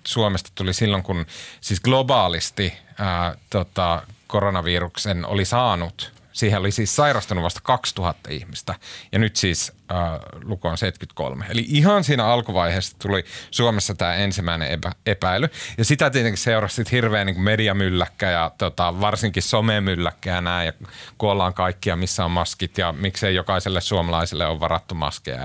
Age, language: 30-49, Finnish